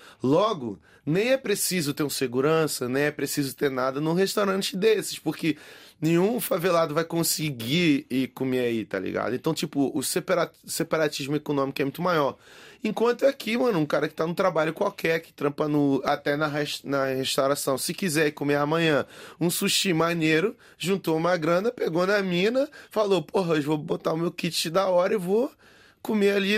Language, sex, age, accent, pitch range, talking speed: Portuguese, male, 20-39, Brazilian, 135-170 Hz, 175 wpm